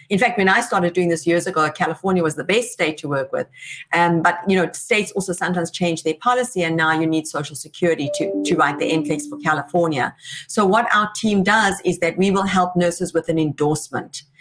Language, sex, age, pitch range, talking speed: English, female, 50-69, 160-195 Hz, 225 wpm